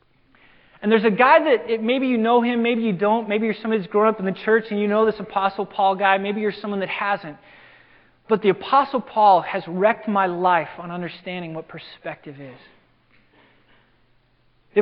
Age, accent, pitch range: 20-39, American, 190-250 Hz